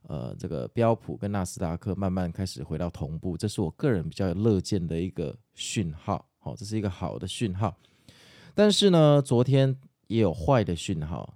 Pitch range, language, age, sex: 90-120 Hz, Chinese, 20-39, male